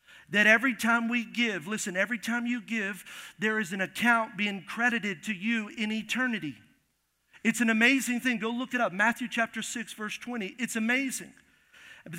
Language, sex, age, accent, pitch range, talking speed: English, male, 50-69, American, 195-235 Hz, 175 wpm